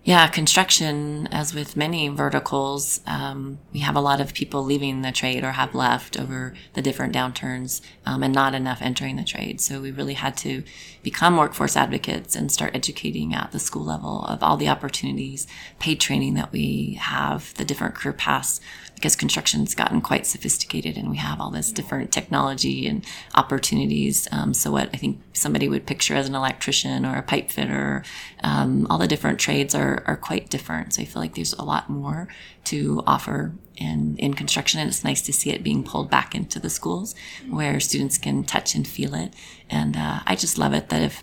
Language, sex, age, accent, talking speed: English, female, 30-49, American, 200 wpm